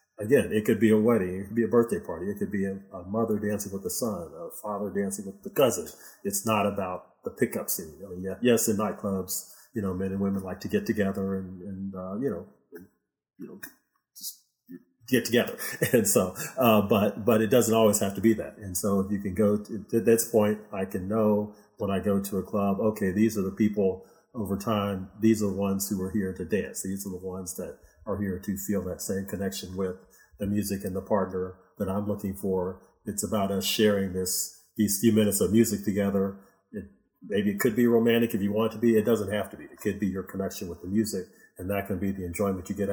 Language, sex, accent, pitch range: English, male, American, 95-110 Hz